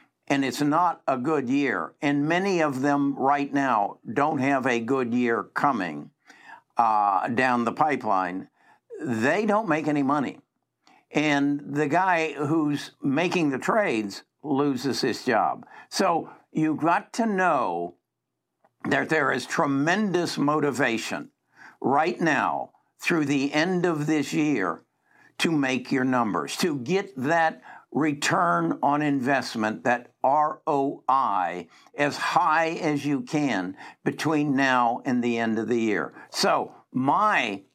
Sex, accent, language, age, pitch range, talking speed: male, American, English, 60-79, 130-165 Hz, 130 wpm